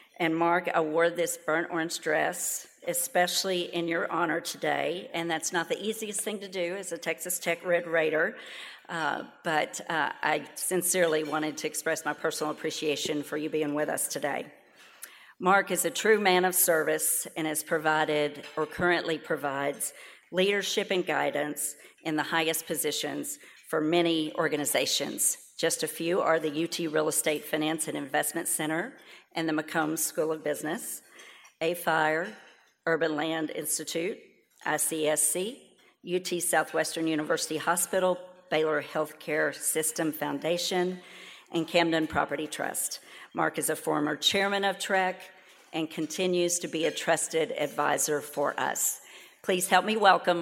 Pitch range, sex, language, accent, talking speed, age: 155-175 Hz, female, English, American, 145 wpm, 50-69